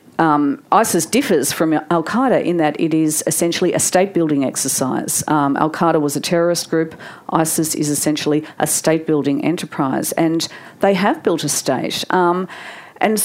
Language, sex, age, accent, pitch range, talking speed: English, female, 50-69, Australian, 150-200 Hz, 150 wpm